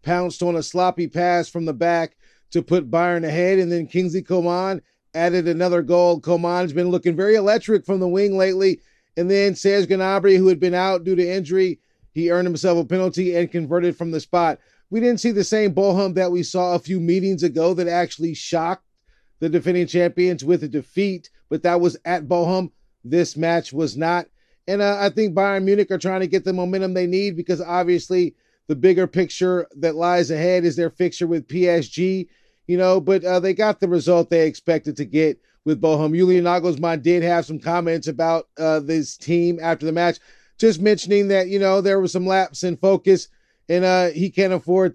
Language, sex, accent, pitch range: English, male, American, 170-185 Hz